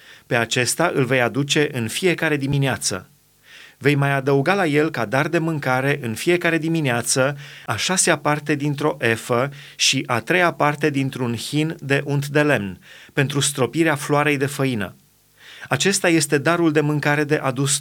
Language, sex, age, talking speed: Romanian, male, 30-49, 160 wpm